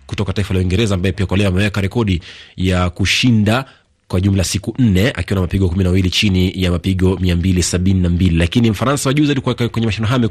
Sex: male